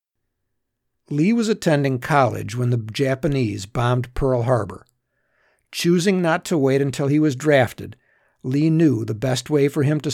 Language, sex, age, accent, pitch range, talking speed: English, male, 60-79, American, 120-155 Hz, 155 wpm